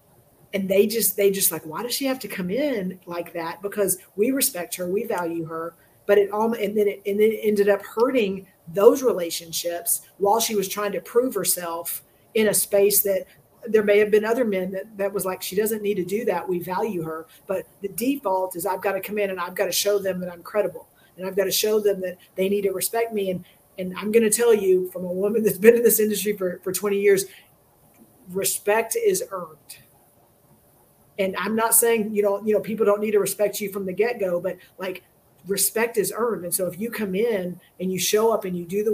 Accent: American